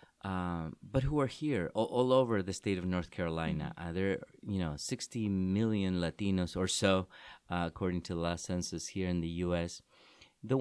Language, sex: English, male